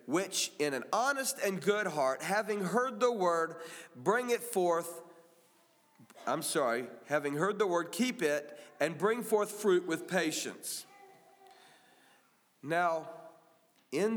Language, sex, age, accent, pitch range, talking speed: English, male, 40-59, American, 180-255 Hz, 125 wpm